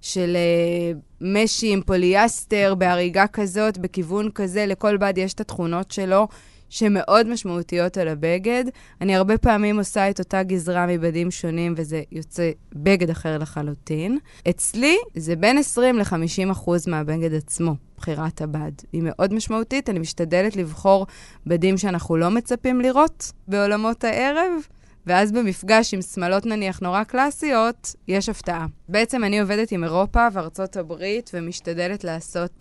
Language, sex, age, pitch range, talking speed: Hebrew, female, 20-39, 170-215 Hz, 130 wpm